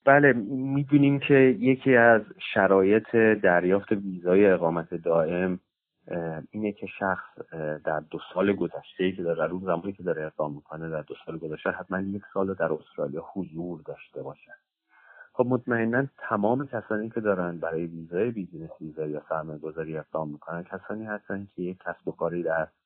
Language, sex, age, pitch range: Persian, male, 40-59, 85-110 Hz